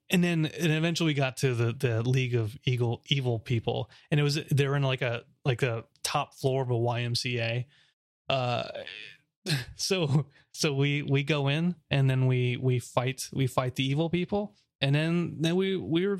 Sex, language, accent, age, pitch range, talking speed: male, English, American, 30-49, 125-155 Hz, 190 wpm